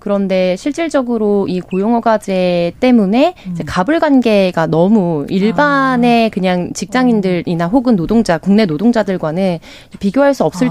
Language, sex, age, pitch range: Korean, female, 20-39, 185-260 Hz